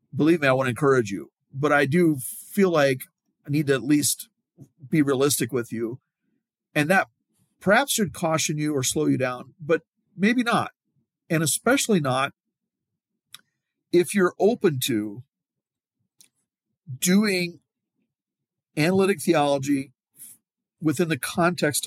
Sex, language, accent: male, English, American